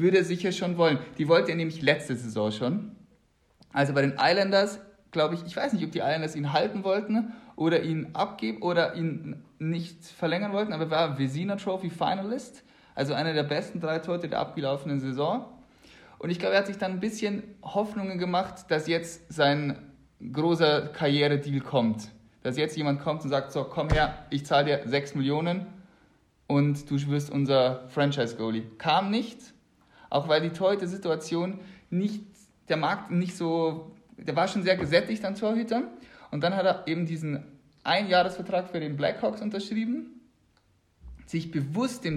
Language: German